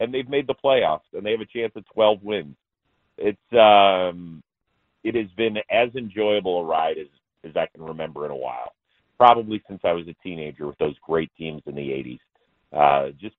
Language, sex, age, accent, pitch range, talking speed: English, male, 40-59, American, 80-105 Hz, 200 wpm